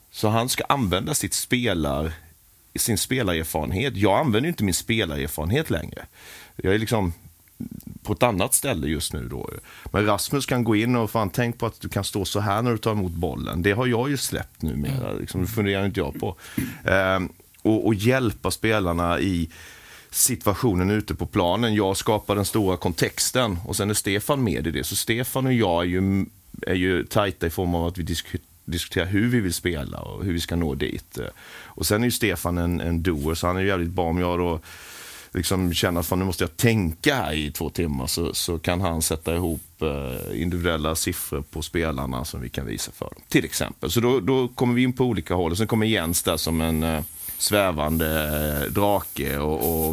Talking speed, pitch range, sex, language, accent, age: 205 wpm, 85-110 Hz, male, Swedish, native, 30-49